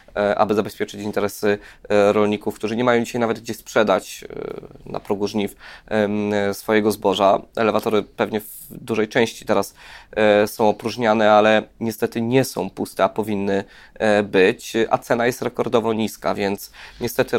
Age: 20-39